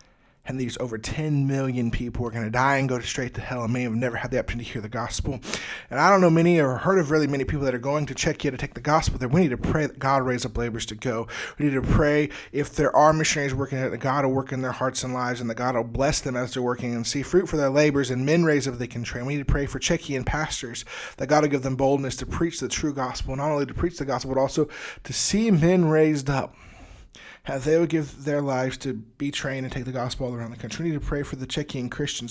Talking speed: 285 wpm